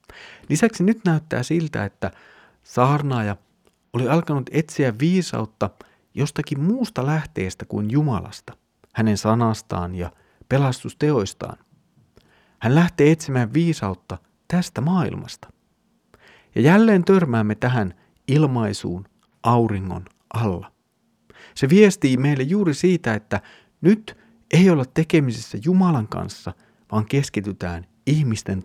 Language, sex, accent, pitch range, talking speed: Finnish, male, native, 105-150 Hz, 100 wpm